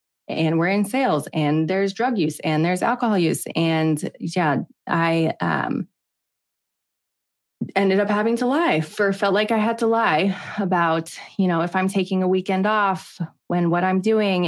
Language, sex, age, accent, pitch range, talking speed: English, female, 20-39, American, 165-215 Hz, 170 wpm